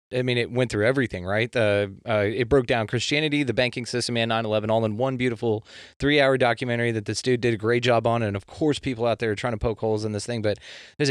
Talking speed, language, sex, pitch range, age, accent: 260 wpm, English, male, 115-135 Hz, 30-49, American